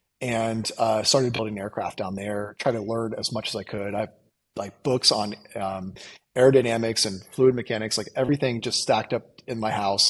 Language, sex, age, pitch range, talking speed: English, male, 30-49, 105-125 Hz, 190 wpm